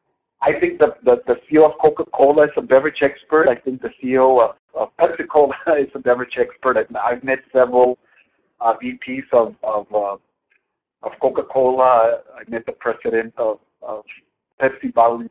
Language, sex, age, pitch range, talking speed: English, male, 50-69, 120-155 Hz, 160 wpm